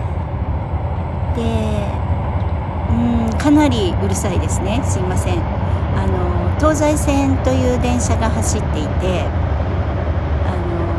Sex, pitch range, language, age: female, 85-135 Hz, Japanese, 60-79